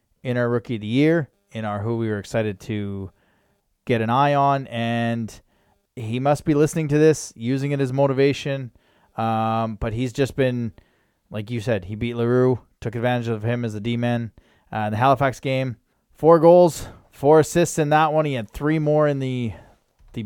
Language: English